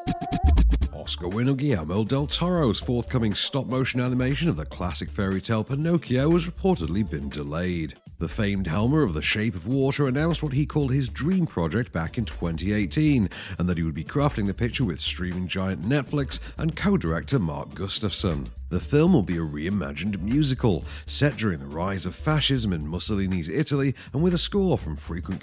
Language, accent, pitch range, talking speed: English, British, 85-140 Hz, 170 wpm